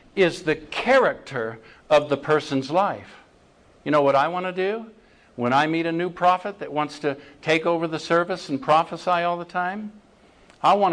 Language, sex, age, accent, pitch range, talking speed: English, male, 50-69, American, 140-175 Hz, 185 wpm